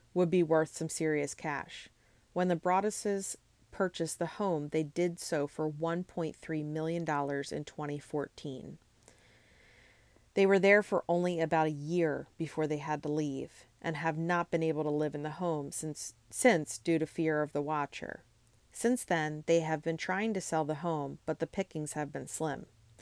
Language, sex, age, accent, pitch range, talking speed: English, female, 40-59, American, 150-170 Hz, 175 wpm